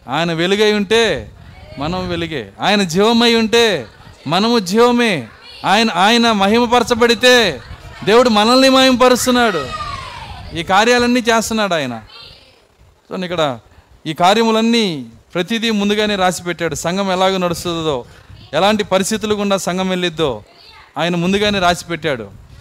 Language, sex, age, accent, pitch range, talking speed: Telugu, male, 30-49, native, 155-225 Hz, 100 wpm